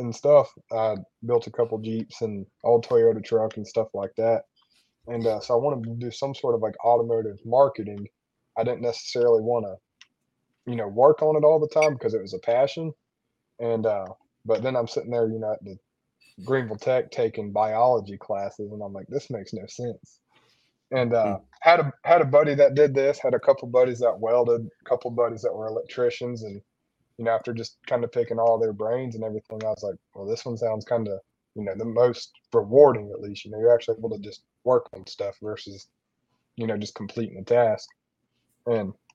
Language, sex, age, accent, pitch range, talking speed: English, male, 20-39, American, 110-125 Hz, 210 wpm